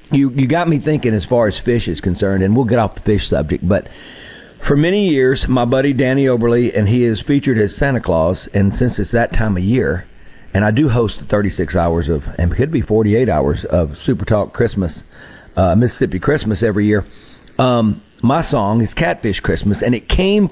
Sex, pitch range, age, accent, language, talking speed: male, 105-135 Hz, 50-69, American, English, 210 wpm